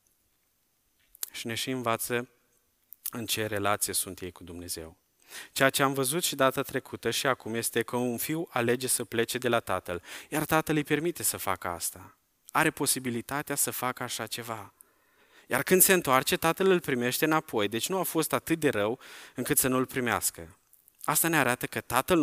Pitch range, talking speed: 105-130 Hz, 185 wpm